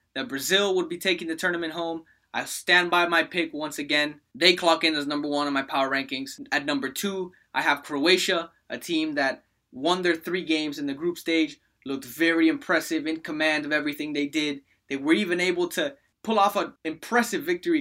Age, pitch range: 20-39, 155-185 Hz